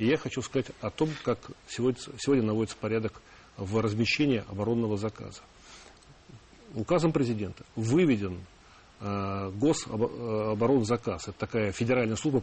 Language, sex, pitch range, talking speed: Russian, male, 105-125 Hz, 110 wpm